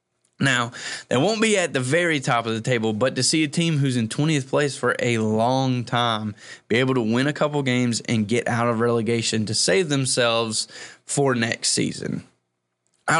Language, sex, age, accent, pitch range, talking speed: English, male, 20-39, American, 115-145 Hz, 195 wpm